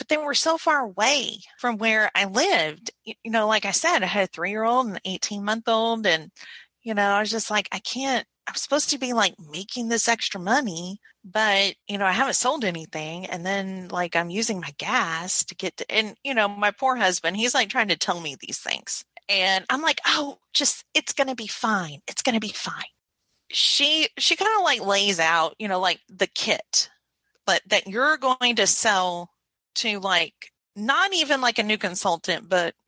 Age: 30-49